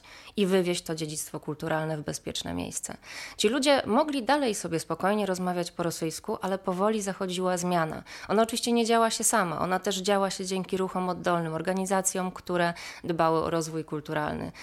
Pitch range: 175-210 Hz